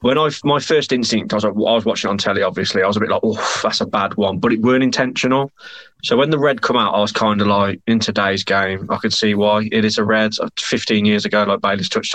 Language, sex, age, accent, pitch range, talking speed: English, male, 20-39, British, 100-110 Hz, 280 wpm